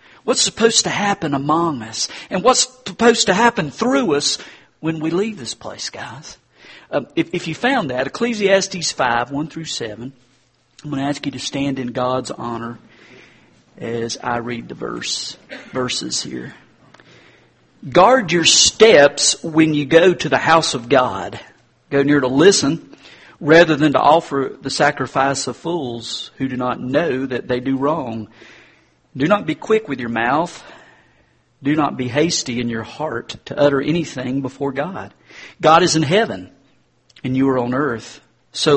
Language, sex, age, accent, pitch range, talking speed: English, male, 50-69, American, 130-165 Hz, 165 wpm